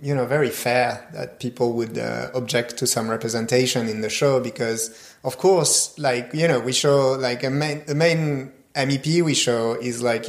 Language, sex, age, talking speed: English, male, 30-49, 190 wpm